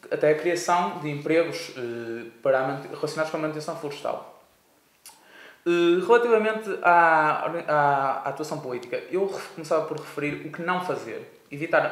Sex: male